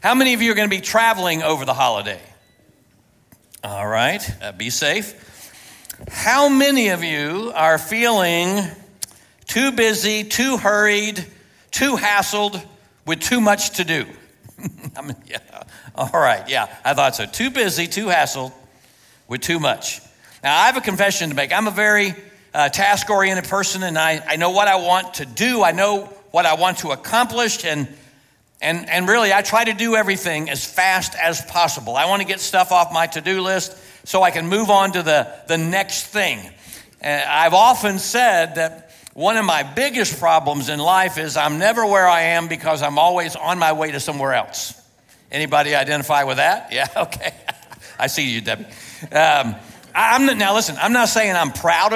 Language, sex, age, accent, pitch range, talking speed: English, male, 60-79, American, 160-210 Hz, 175 wpm